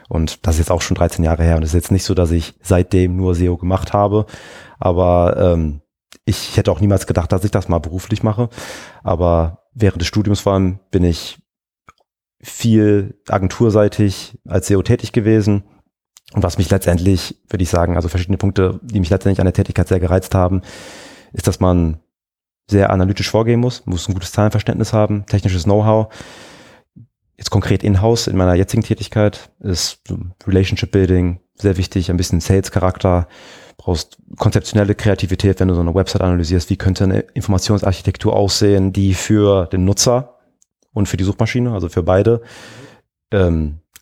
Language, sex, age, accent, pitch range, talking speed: German, male, 30-49, German, 90-105 Hz, 165 wpm